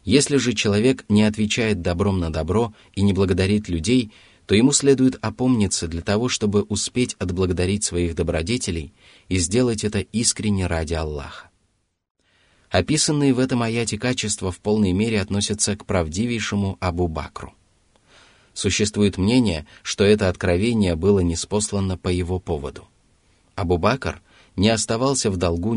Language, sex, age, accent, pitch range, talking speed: Russian, male, 30-49, native, 90-110 Hz, 130 wpm